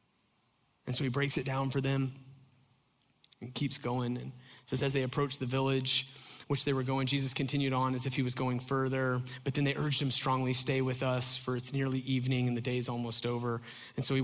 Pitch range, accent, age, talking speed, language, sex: 125-135 Hz, American, 30-49, 225 wpm, English, male